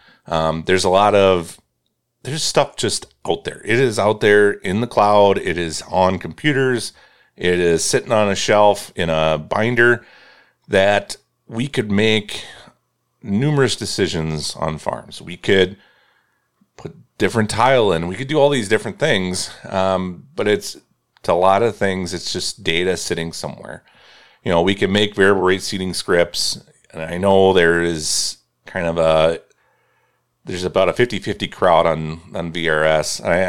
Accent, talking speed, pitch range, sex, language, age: American, 165 wpm, 80-105 Hz, male, English, 40-59